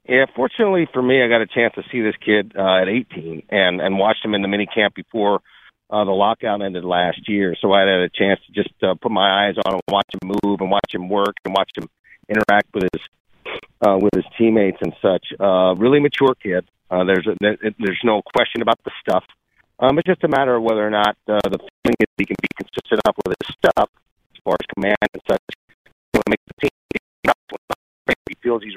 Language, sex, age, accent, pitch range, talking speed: English, male, 40-59, American, 100-135 Hz, 215 wpm